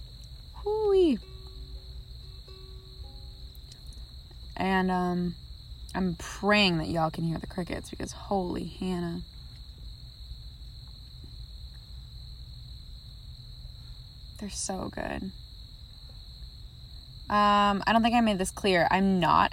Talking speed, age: 80 wpm, 20-39